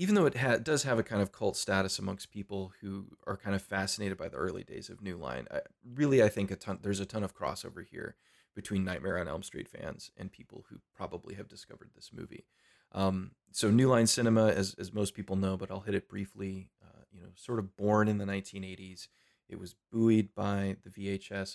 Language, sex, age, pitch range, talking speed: English, male, 30-49, 95-105 Hz, 225 wpm